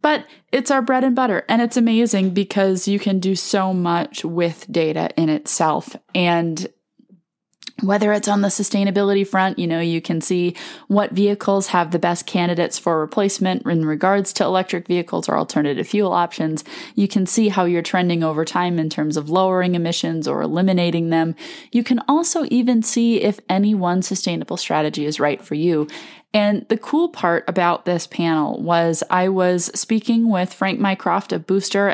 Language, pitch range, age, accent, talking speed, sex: English, 165-210 Hz, 20-39, American, 175 wpm, female